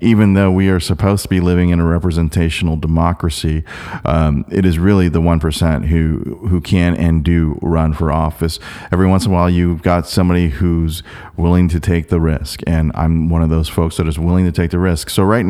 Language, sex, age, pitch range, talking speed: English, male, 30-49, 80-95 Hz, 210 wpm